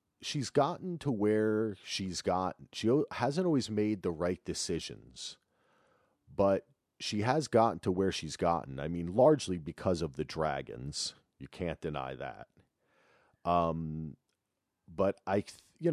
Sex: male